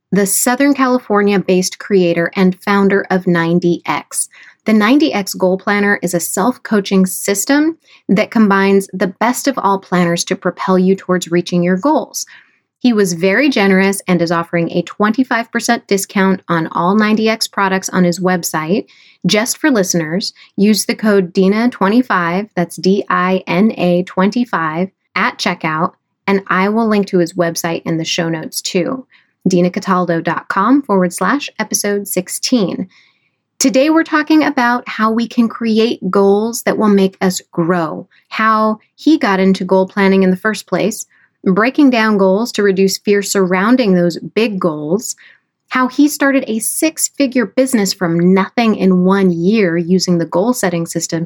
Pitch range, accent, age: 180-225 Hz, American, 30-49